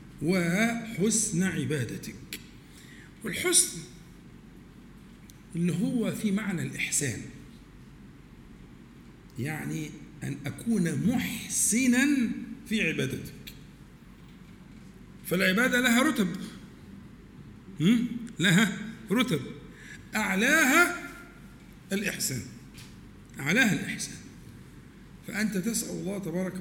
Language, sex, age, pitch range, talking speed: Arabic, male, 50-69, 170-230 Hz, 60 wpm